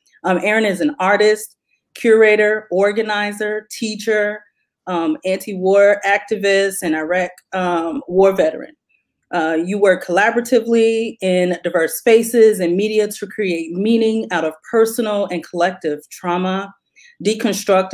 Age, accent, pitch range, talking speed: 30-49, American, 180-210 Hz, 115 wpm